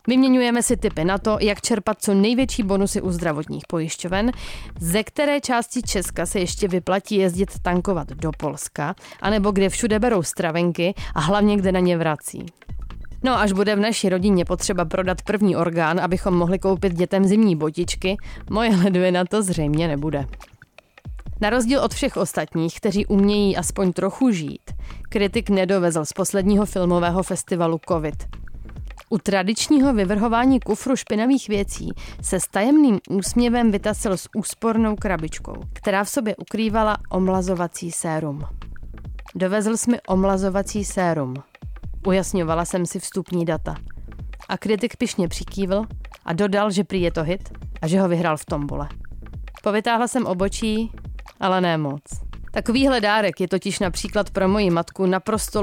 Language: Czech